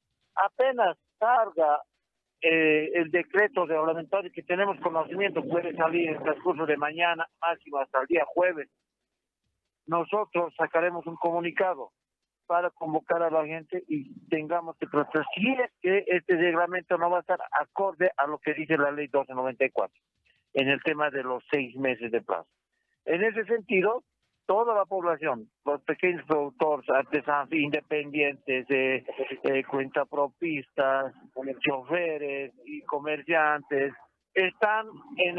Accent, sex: Mexican, male